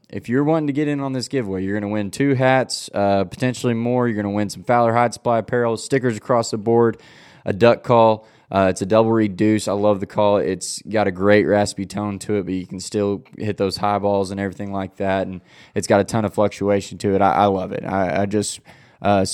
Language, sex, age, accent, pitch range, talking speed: English, male, 20-39, American, 95-110 Hz, 240 wpm